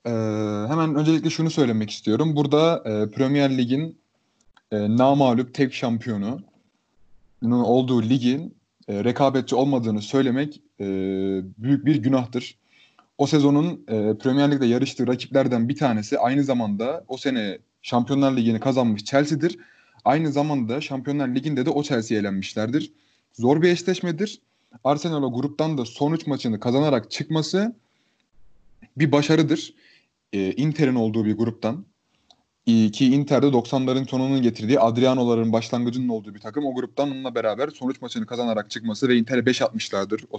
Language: Turkish